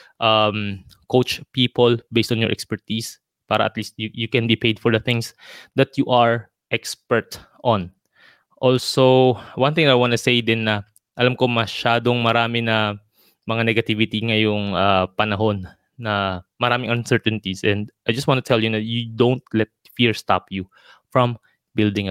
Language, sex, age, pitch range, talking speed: Filipino, male, 20-39, 105-125 Hz, 165 wpm